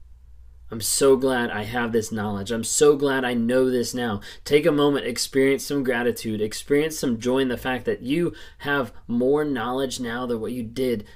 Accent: American